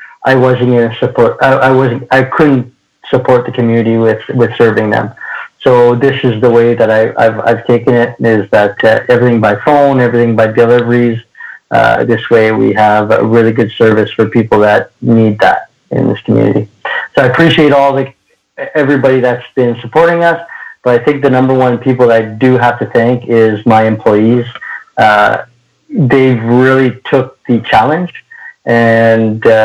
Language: English